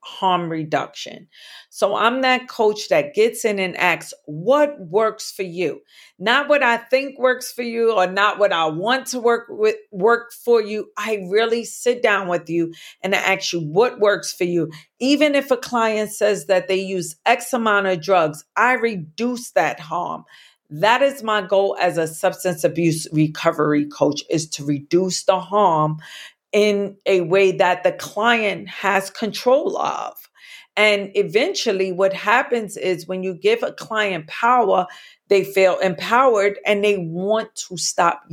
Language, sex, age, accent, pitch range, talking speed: English, female, 40-59, American, 185-235 Hz, 165 wpm